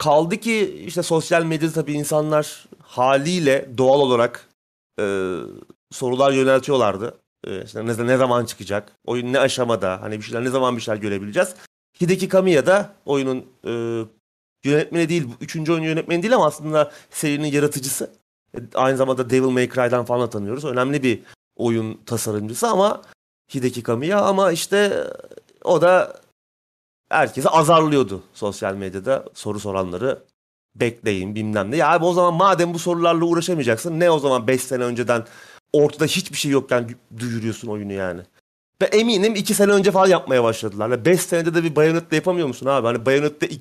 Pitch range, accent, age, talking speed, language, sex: 115-170 Hz, native, 30-49, 155 wpm, Turkish, male